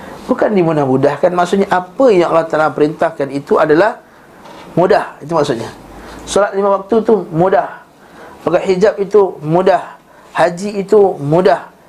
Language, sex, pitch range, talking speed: Malay, male, 140-180 Hz, 125 wpm